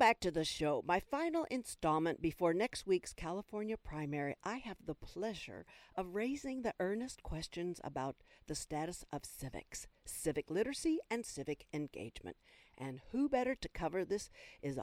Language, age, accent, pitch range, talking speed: English, 60-79, American, 145-210 Hz, 155 wpm